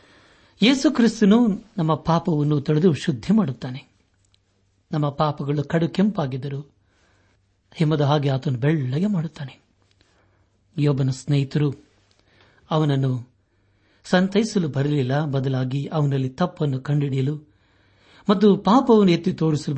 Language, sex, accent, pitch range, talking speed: Kannada, male, native, 100-160 Hz, 90 wpm